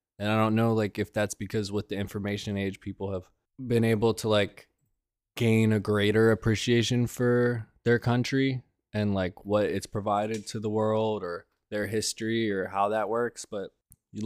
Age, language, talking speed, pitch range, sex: 20-39, English, 175 wpm, 105-120 Hz, male